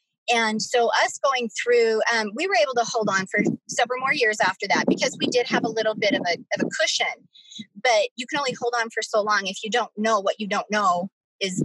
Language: English